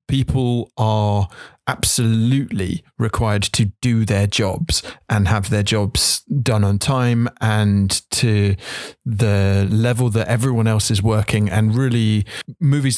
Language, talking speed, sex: English, 125 wpm, male